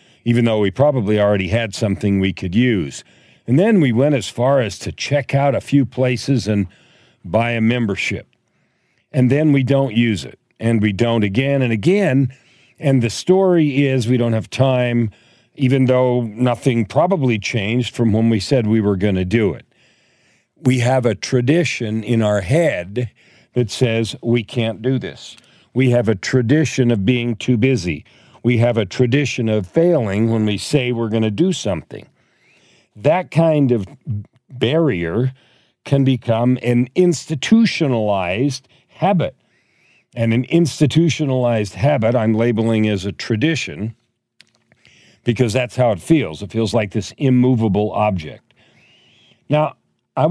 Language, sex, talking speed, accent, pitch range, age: English, male, 150 wpm, American, 110-135 Hz, 50-69